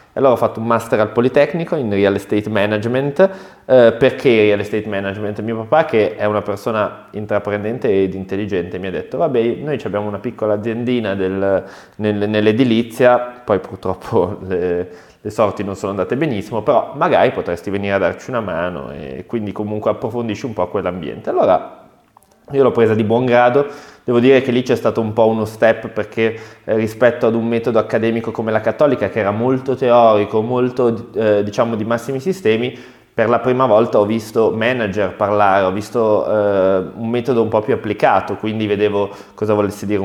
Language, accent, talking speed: Italian, native, 180 wpm